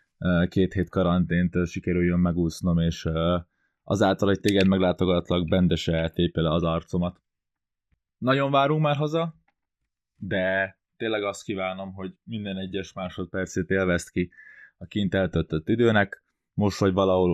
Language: Hungarian